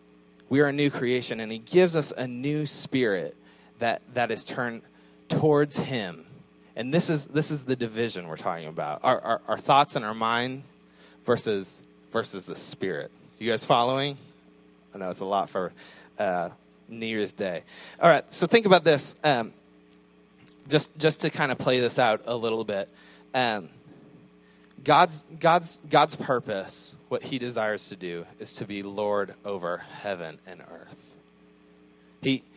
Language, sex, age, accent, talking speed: English, male, 20-39, American, 165 wpm